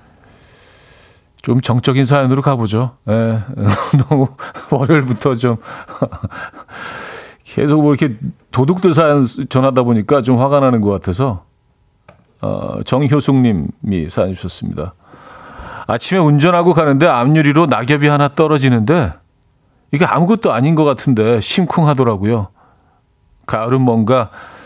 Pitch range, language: 105-145 Hz, Korean